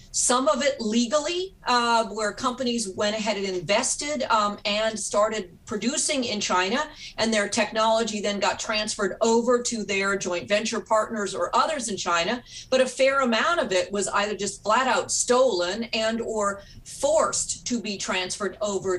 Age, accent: 40-59, American